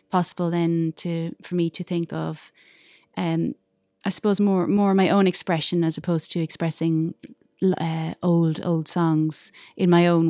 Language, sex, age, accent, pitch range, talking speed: English, female, 30-49, Irish, 170-195 Hz, 155 wpm